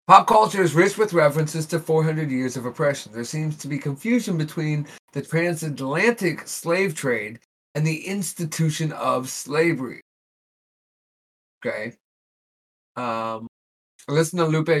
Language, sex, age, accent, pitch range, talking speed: English, male, 30-49, American, 130-160 Hz, 125 wpm